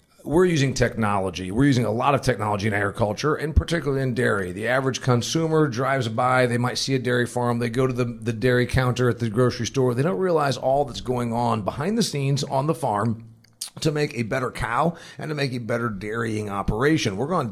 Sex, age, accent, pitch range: male, 40-59, American, 115-140 Hz